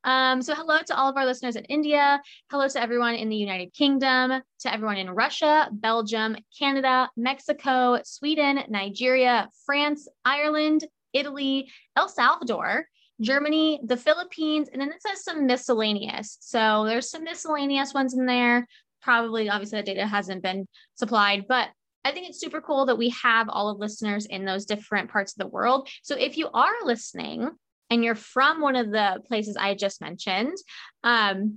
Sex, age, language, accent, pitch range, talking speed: female, 20-39, English, American, 210-275 Hz, 165 wpm